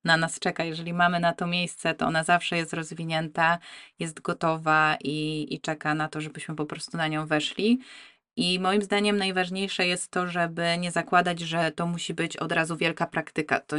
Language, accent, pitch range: Polish, native, 165-180 Hz